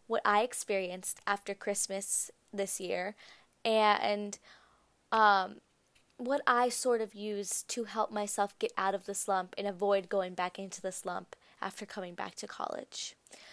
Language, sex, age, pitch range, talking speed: English, female, 20-39, 195-235 Hz, 150 wpm